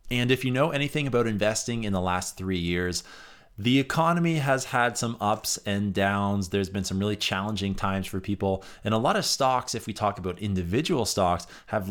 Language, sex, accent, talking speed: English, male, American, 200 wpm